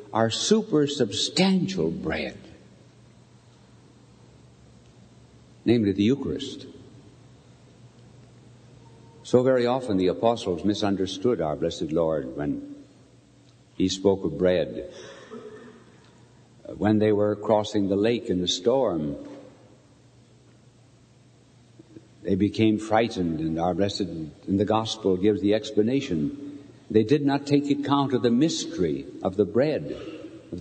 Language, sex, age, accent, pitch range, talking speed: English, male, 60-79, American, 100-135 Hz, 105 wpm